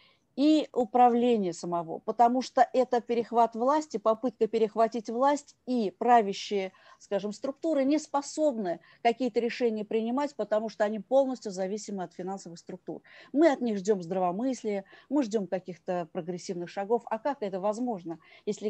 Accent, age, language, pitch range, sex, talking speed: native, 40-59, Russian, 200-245 Hz, female, 140 wpm